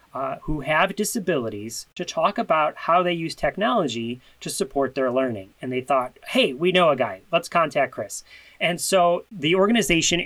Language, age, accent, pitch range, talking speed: English, 30-49, American, 130-170 Hz, 175 wpm